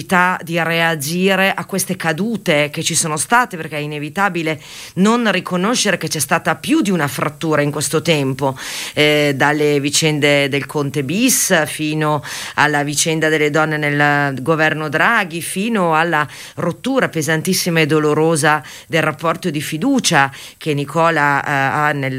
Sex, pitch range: female, 155-210 Hz